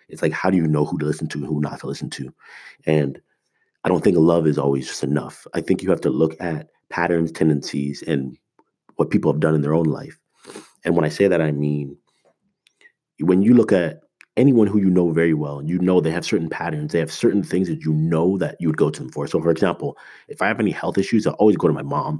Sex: male